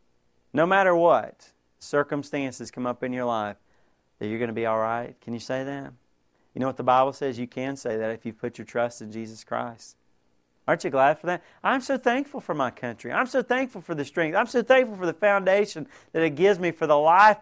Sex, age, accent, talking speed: male, 40-59, American, 235 wpm